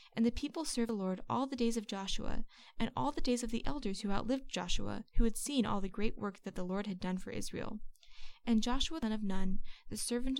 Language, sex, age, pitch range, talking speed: English, female, 10-29, 200-240 Hz, 250 wpm